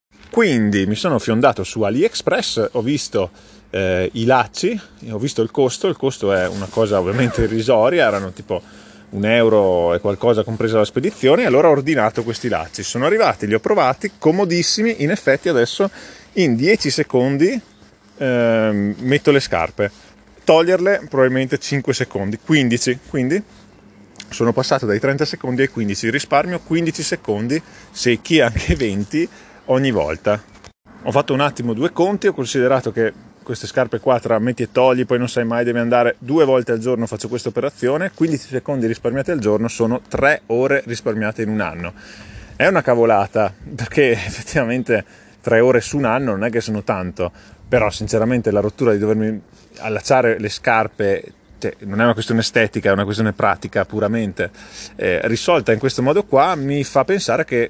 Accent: native